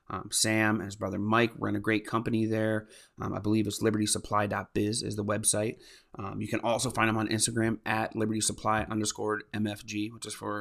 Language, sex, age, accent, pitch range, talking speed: English, male, 30-49, American, 105-120 Hz, 190 wpm